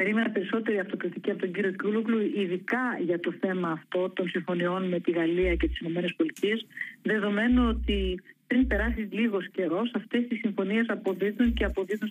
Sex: female